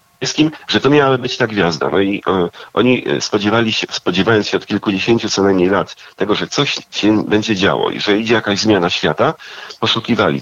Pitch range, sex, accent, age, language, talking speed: 90-110 Hz, male, native, 40-59, Polish, 185 wpm